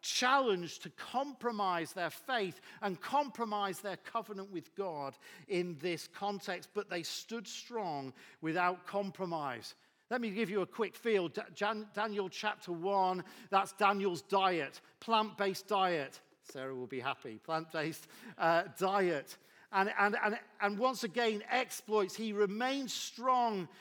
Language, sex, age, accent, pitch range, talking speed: English, male, 50-69, British, 180-220 Hz, 130 wpm